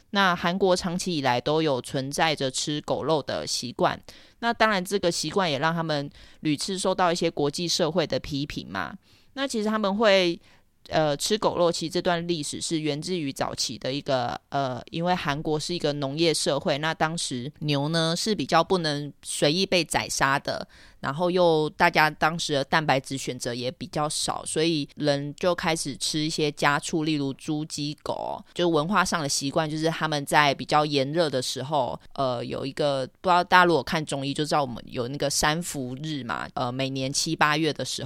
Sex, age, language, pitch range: female, 20-39, Chinese, 140-170 Hz